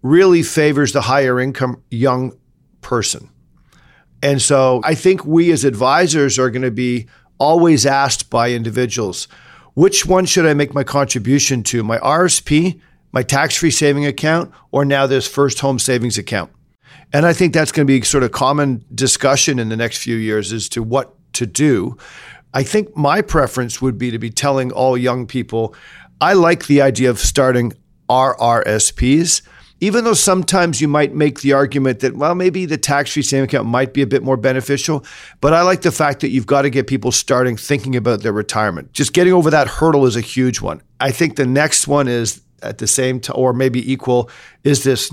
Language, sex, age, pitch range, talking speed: English, male, 50-69, 120-145 Hz, 190 wpm